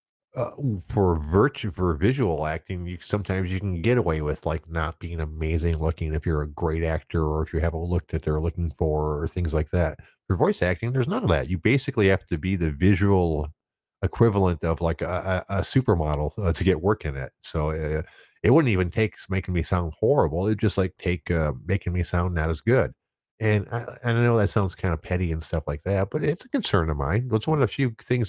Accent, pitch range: American, 80-110 Hz